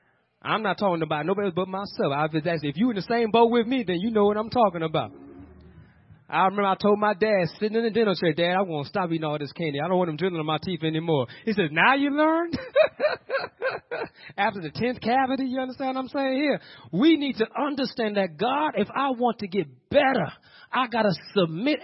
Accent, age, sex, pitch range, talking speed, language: American, 30-49, male, 120-200 Hz, 235 wpm, English